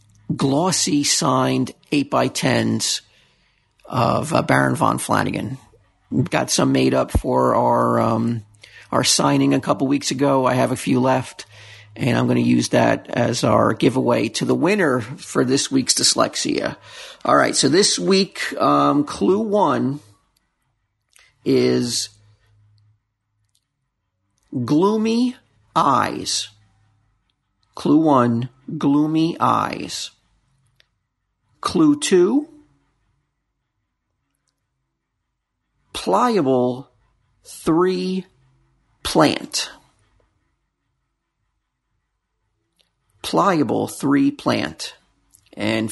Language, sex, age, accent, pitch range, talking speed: English, male, 50-69, American, 105-145 Hz, 90 wpm